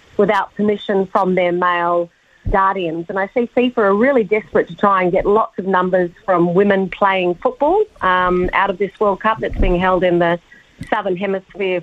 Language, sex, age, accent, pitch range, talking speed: English, female, 40-59, Australian, 180-215 Hz, 190 wpm